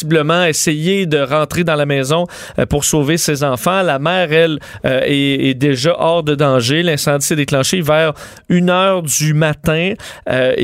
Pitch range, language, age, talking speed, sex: 125-160 Hz, French, 30-49, 165 wpm, male